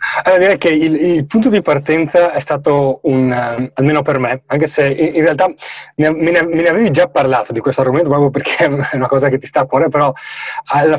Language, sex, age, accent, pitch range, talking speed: Italian, male, 20-39, native, 130-155 Hz, 220 wpm